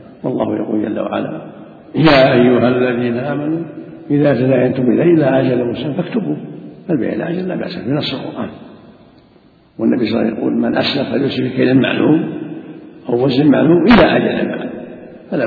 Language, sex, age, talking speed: Arabic, male, 60-79, 160 wpm